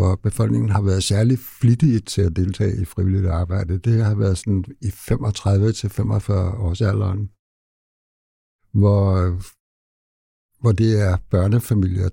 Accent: Danish